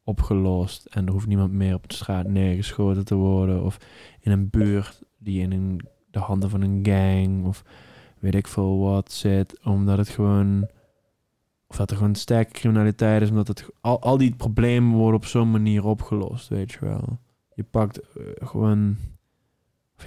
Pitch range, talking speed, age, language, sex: 100-110 Hz, 175 wpm, 20-39, Dutch, male